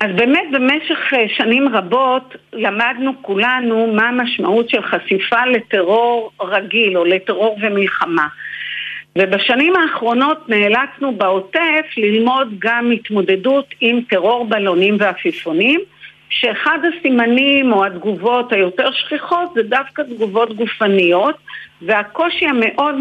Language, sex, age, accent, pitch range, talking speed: Hebrew, female, 50-69, native, 200-270 Hz, 100 wpm